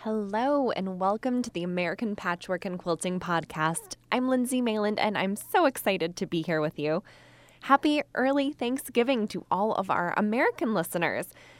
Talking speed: 160 wpm